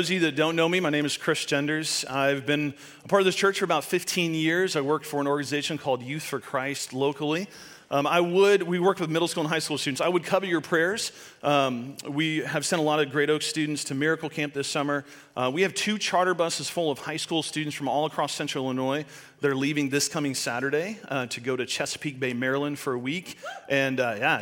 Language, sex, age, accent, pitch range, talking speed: English, male, 40-59, American, 135-165 Hz, 245 wpm